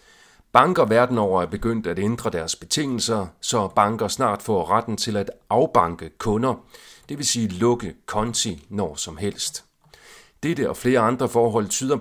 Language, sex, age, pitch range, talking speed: Danish, male, 40-59, 95-125 Hz, 160 wpm